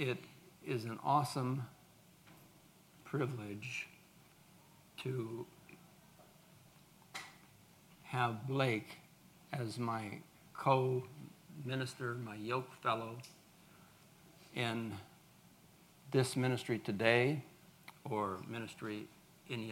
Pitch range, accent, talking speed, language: 120-165 Hz, American, 65 wpm, English